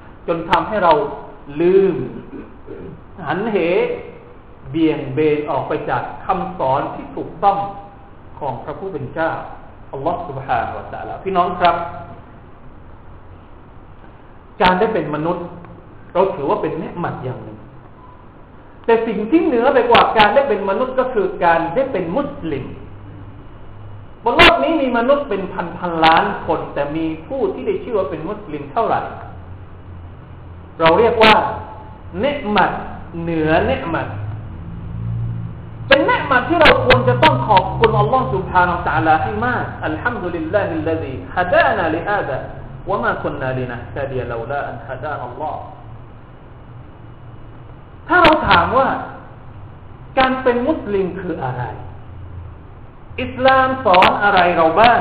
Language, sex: Thai, male